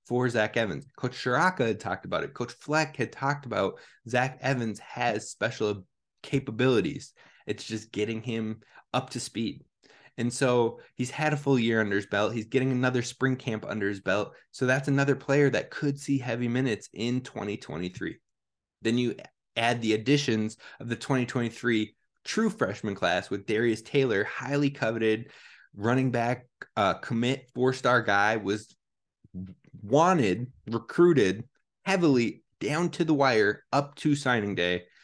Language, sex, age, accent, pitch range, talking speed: English, male, 20-39, American, 110-135 Hz, 150 wpm